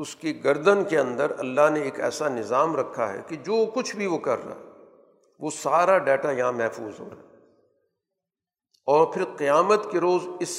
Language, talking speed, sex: Urdu, 185 wpm, male